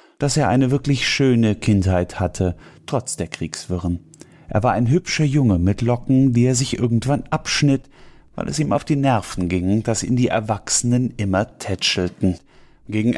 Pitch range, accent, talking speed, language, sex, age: 110-135 Hz, German, 165 wpm, German, male, 30-49